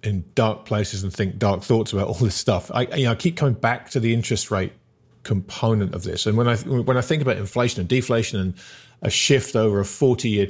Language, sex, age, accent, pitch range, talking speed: English, male, 50-69, British, 100-130 Hz, 235 wpm